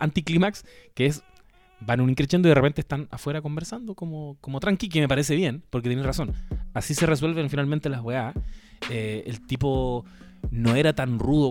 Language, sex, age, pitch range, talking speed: Spanish, male, 20-39, 110-145 Hz, 175 wpm